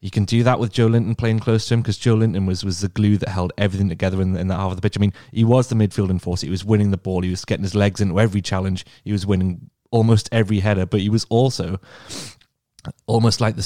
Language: English